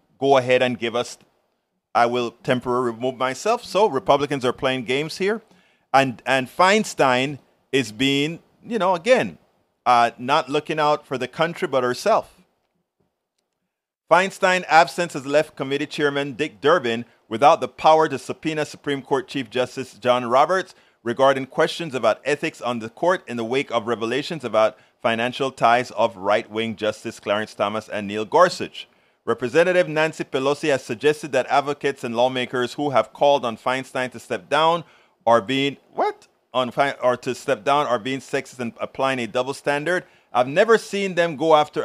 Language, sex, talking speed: English, male, 165 wpm